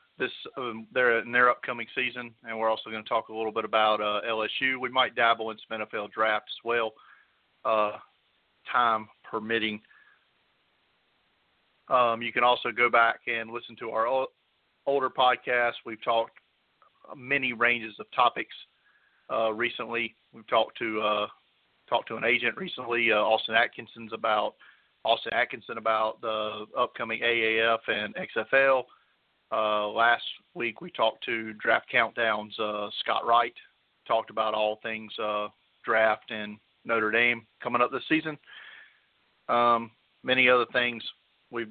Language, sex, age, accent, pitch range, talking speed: English, male, 40-59, American, 110-120 Hz, 145 wpm